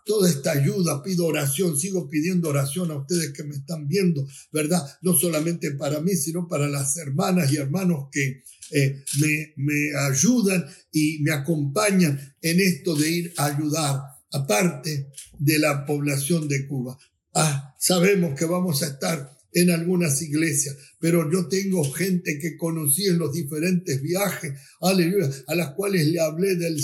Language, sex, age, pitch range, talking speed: English, male, 60-79, 145-180 Hz, 160 wpm